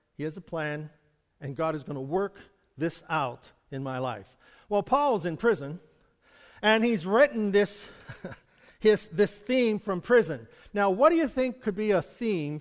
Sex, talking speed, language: male, 170 wpm, English